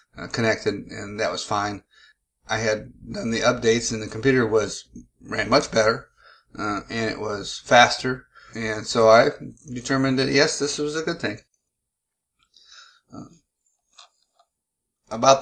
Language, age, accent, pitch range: English, 30-49, American, 110-135 Hz